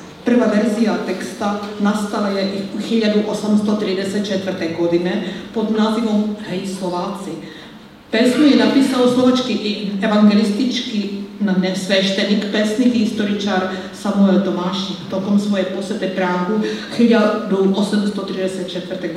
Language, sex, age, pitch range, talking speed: Czech, female, 50-69, 185-215 Hz, 95 wpm